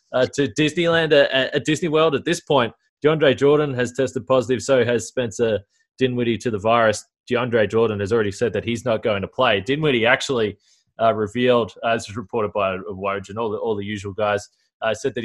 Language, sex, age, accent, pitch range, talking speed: English, male, 20-39, Australian, 105-130 Hz, 200 wpm